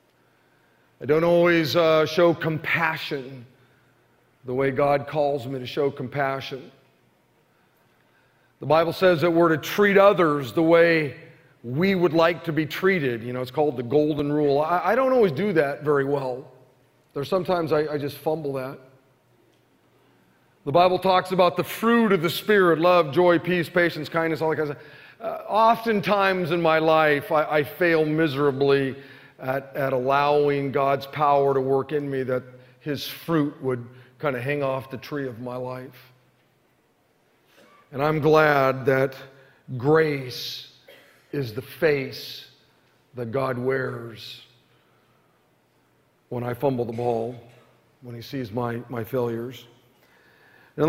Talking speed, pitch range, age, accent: 145 wpm, 130-165 Hz, 40-59, American